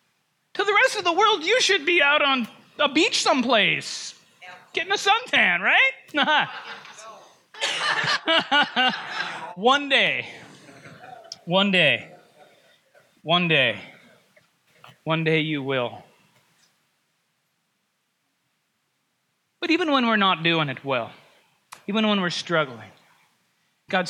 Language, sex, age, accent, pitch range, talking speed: English, male, 30-49, American, 175-290 Hz, 100 wpm